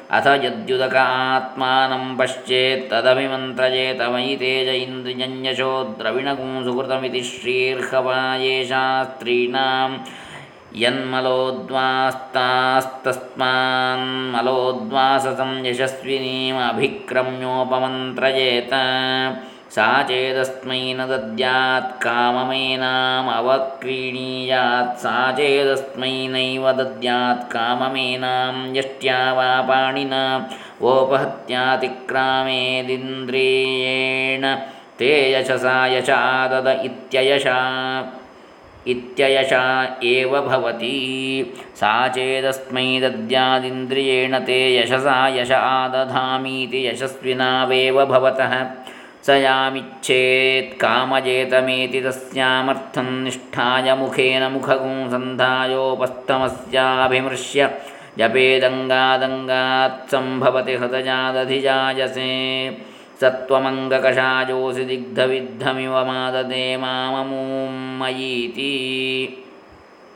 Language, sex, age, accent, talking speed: Kannada, male, 20-39, native, 35 wpm